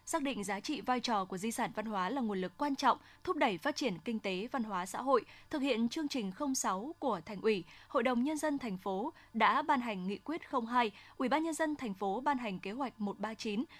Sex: female